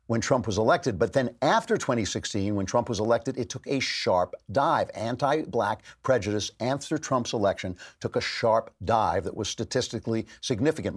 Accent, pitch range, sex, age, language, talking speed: American, 105-130 Hz, male, 50-69, English, 165 wpm